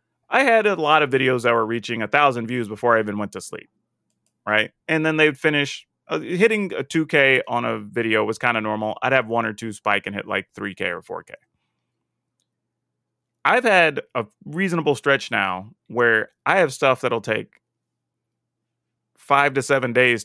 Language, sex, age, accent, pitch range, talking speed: English, male, 30-49, American, 110-140 Hz, 180 wpm